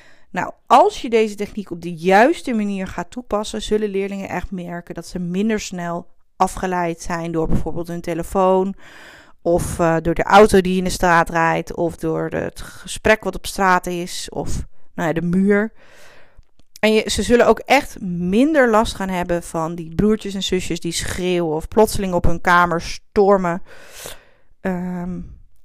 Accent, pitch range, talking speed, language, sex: Dutch, 170-215 Hz, 170 wpm, Dutch, female